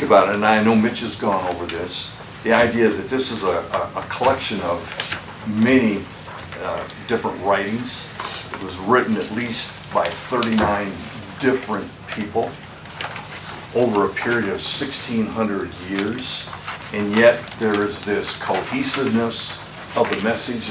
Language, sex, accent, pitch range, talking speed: English, male, American, 105-120 Hz, 140 wpm